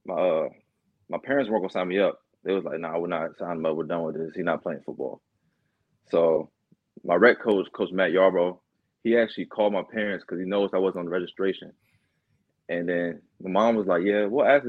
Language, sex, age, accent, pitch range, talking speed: English, male, 20-39, American, 90-105 Hz, 225 wpm